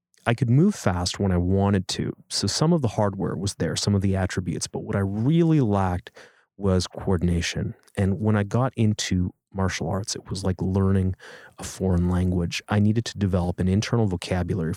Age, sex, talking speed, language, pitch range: 30-49, male, 190 wpm, English, 90-110 Hz